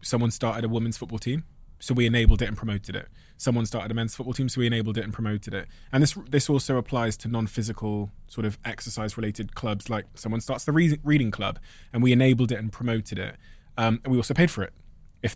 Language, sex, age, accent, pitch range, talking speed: English, male, 20-39, British, 110-130 Hz, 225 wpm